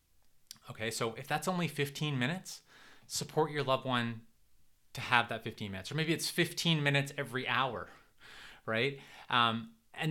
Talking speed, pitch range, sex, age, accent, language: 155 wpm, 110-150 Hz, male, 20-39, American, English